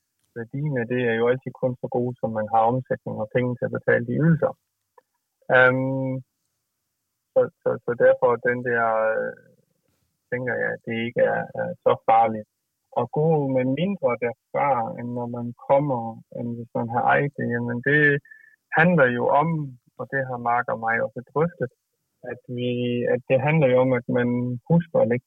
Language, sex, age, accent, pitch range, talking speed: Danish, male, 30-49, native, 120-155 Hz, 180 wpm